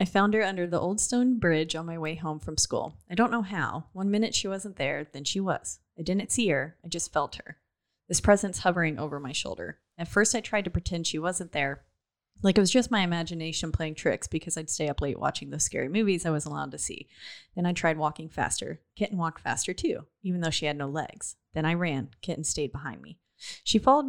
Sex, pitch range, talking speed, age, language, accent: female, 155-195 Hz, 235 wpm, 30-49, English, American